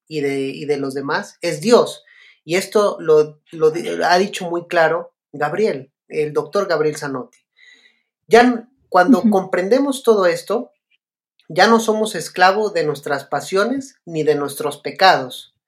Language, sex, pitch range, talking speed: Spanish, male, 155-220 Hz, 140 wpm